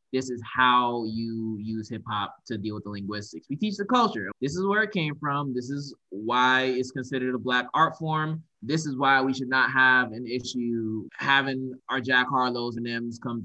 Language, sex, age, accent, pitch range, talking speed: English, male, 20-39, American, 115-130 Hz, 210 wpm